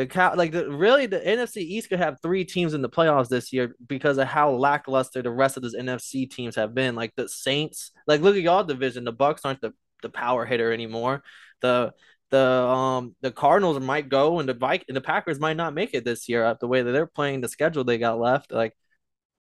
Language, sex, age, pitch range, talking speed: English, male, 20-39, 130-175 Hz, 230 wpm